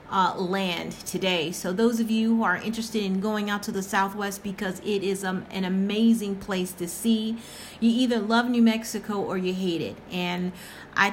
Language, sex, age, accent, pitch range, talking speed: English, female, 40-59, American, 185-230 Hz, 195 wpm